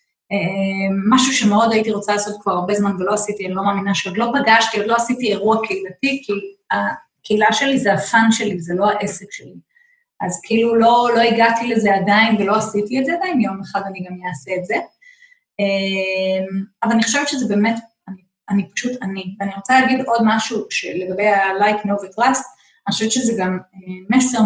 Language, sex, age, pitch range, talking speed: Hebrew, female, 20-39, 195-240 Hz, 185 wpm